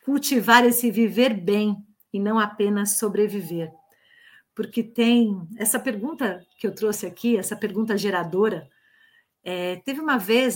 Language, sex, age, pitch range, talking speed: Portuguese, female, 50-69, 195-250 Hz, 130 wpm